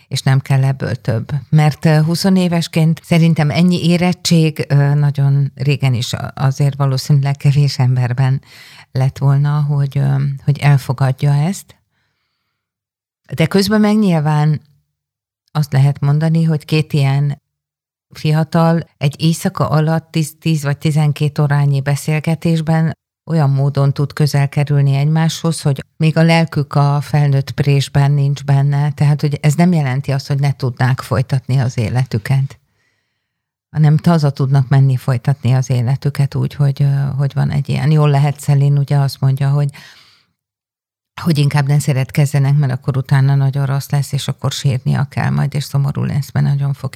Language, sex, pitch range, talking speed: Hungarian, female, 135-150 Hz, 140 wpm